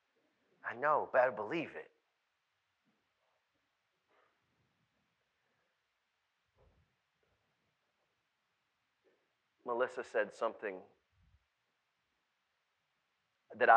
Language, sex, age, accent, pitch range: English, male, 40-59, American, 150-195 Hz